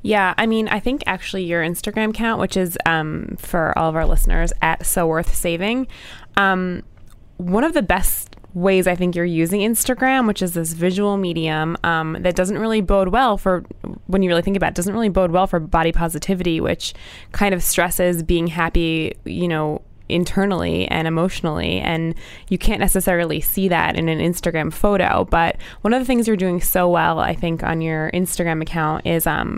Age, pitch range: 20-39, 165-195 Hz